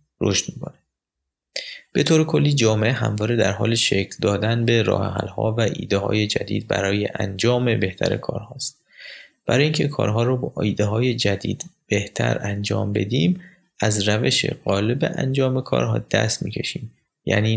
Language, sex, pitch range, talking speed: Persian, male, 100-135 Hz, 135 wpm